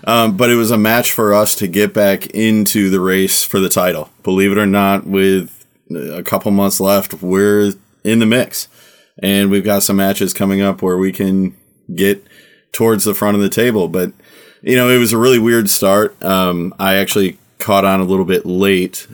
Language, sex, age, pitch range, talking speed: English, male, 30-49, 95-105 Hz, 205 wpm